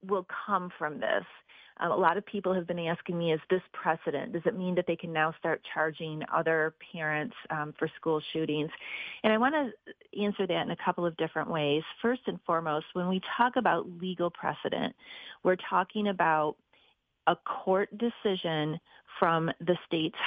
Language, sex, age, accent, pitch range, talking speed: English, female, 30-49, American, 160-205 Hz, 180 wpm